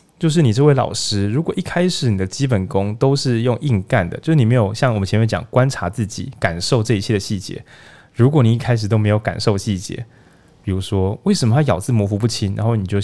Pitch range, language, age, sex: 100-125 Hz, Chinese, 20-39, male